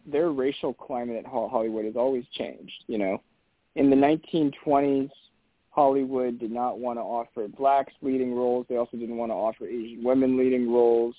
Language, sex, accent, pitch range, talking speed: English, male, American, 115-130 Hz, 170 wpm